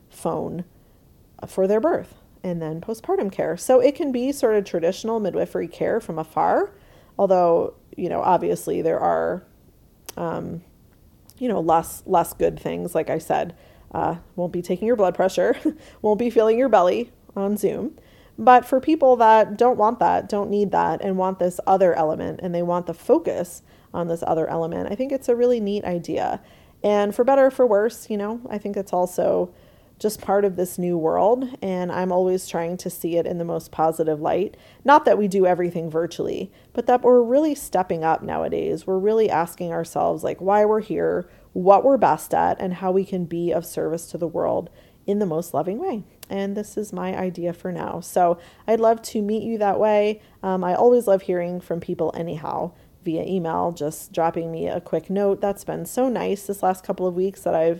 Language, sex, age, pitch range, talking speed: English, female, 30-49, 175-220 Hz, 200 wpm